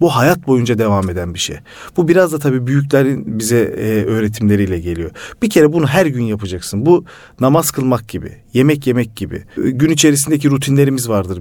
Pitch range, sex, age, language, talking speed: 110-160 Hz, male, 40-59, Turkish, 175 wpm